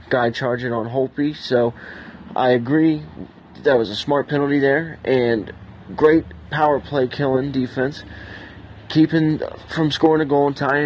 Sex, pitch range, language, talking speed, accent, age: male, 125-145 Hz, English, 145 wpm, American, 20-39